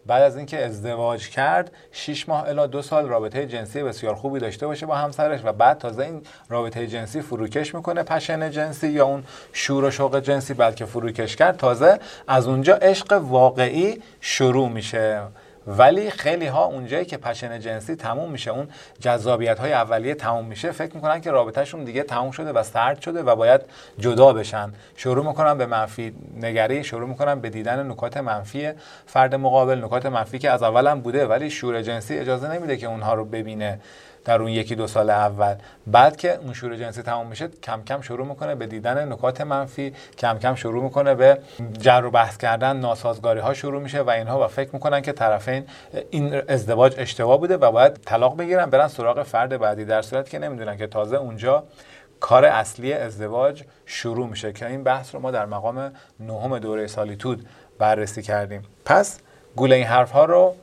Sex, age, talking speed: male, 40-59, 180 wpm